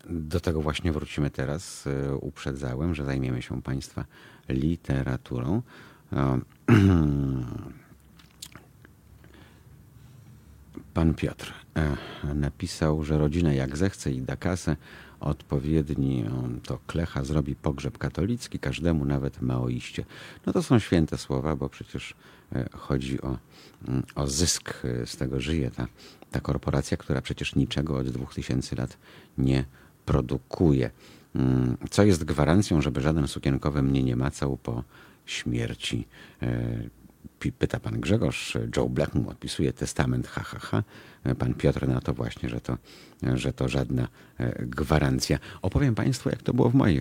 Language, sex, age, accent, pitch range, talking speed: Polish, male, 50-69, native, 65-80 Hz, 120 wpm